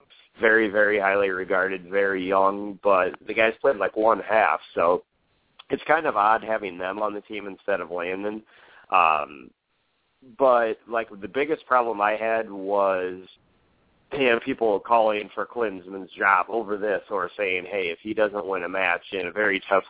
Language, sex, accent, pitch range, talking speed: English, male, American, 95-110 Hz, 170 wpm